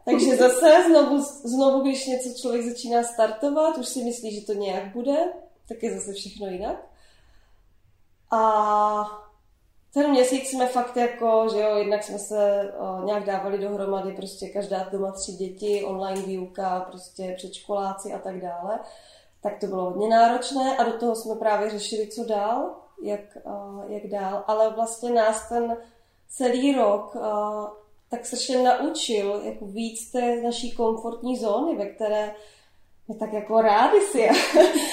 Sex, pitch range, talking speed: female, 200-240 Hz, 150 wpm